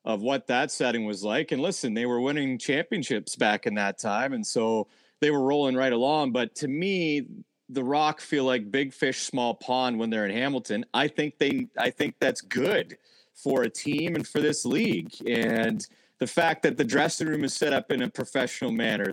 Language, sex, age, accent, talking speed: English, male, 30-49, American, 205 wpm